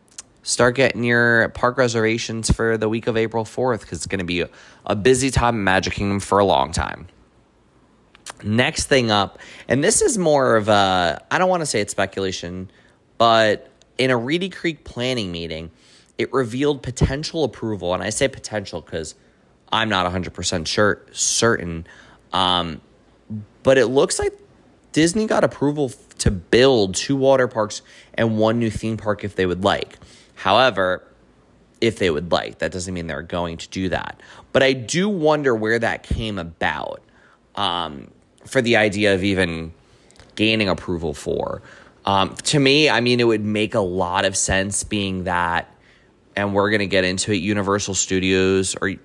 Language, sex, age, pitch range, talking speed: English, male, 20-39, 95-120 Hz, 170 wpm